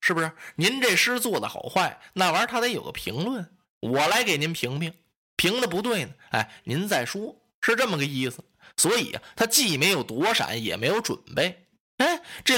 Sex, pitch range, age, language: male, 170-245 Hz, 20-39, Chinese